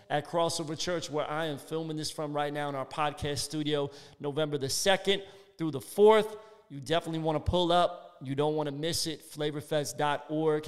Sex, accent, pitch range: male, American, 145-170 Hz